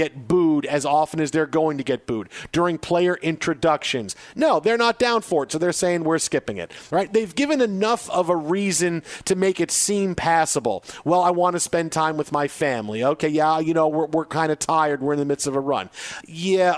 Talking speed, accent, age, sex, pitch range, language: 225 wpm, American, 40-59, male, 150-185 Hz, English